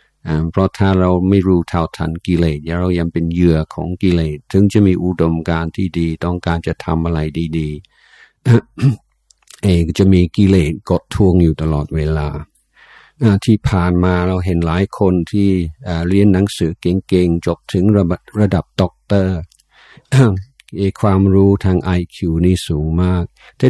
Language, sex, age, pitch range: Thai, male, 60-79, 85-100 Hz